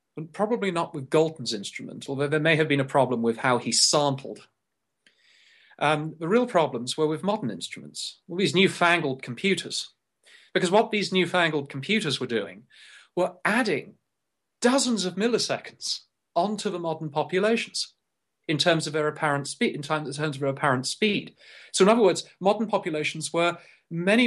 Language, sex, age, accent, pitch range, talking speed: English, male, 40-59, British, 140-195 Hz, 165 wpm